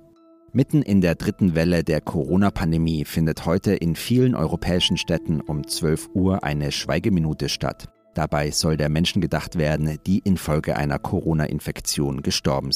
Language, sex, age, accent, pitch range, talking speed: German, male, 40-59, German, 90-130 Hz, 140 wpm